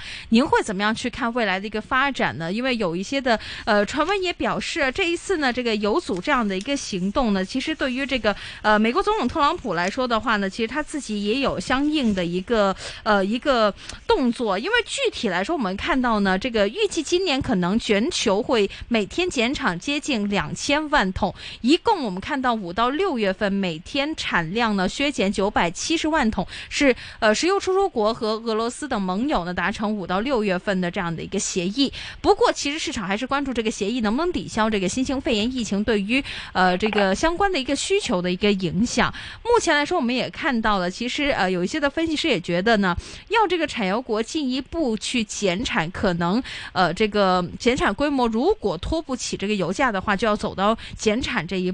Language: Chinese